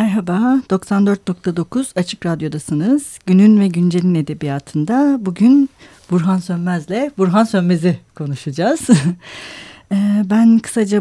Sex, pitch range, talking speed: female, 175-230 Hz, 85 wpm